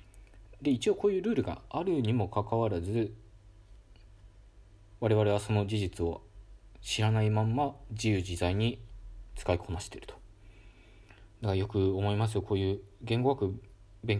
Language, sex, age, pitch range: Japanese, male, 20-39, 100-115 Hz